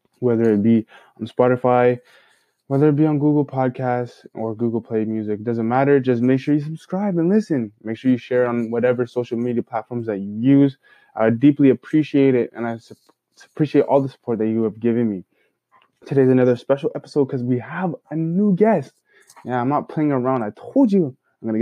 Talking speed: 200 wpm